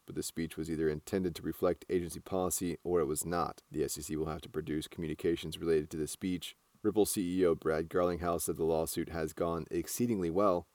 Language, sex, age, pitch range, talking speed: English, male, 30-49, 80-90 Hz, 200 wpm